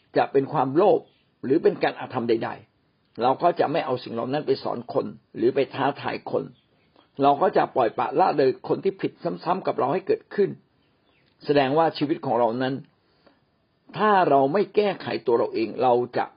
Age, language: 60-79, Thai